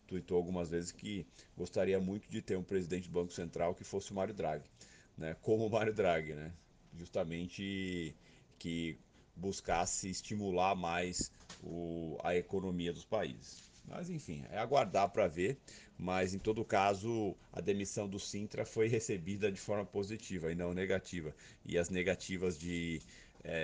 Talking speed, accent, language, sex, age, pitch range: 150 wpm, Brazilian, Portuguese, male, 40-59, 85-100 Hz